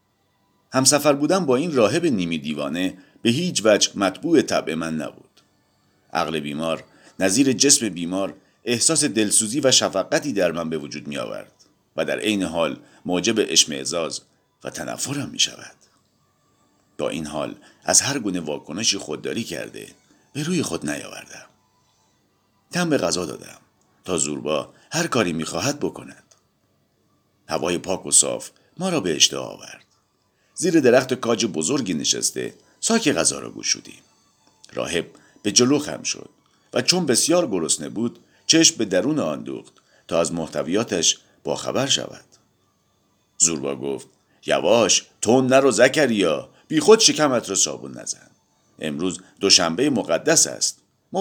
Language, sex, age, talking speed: English, male, 50-69, 140 wpm